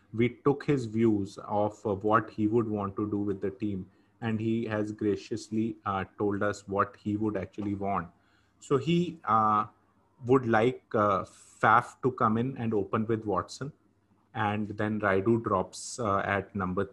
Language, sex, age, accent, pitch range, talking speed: English, male, 30-49, Indian, 100-110 Hz, 170 wpm